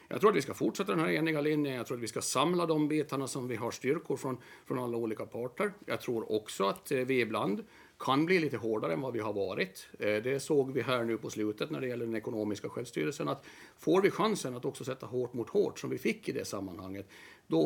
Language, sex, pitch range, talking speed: Swedish, male, 115-140 Hz, 245 wpm